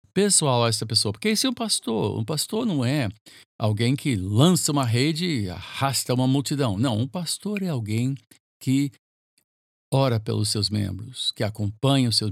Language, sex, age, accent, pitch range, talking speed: Portuguese, male, 50-69, Brazilian, 105-135 Hz, 175 wpm